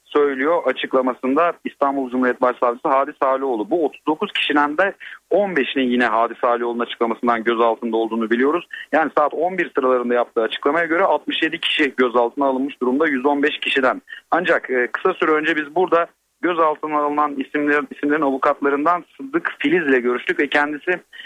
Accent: native